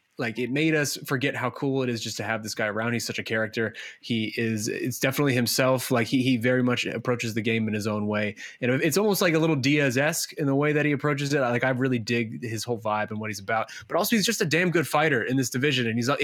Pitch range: 120-155 Hz